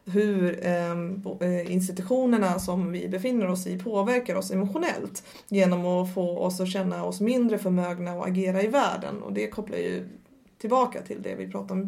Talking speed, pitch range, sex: 165 wpm, 185-215 Hz, female